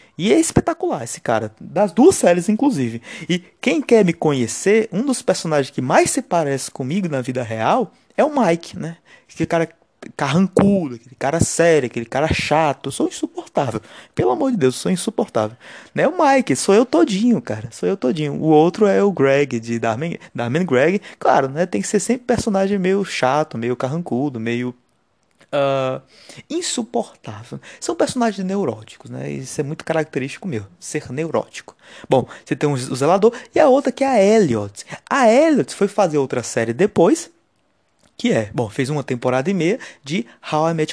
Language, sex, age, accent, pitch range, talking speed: Portuguese, male, 20-39, Brazilian, 130-205 Hz, 180 wpm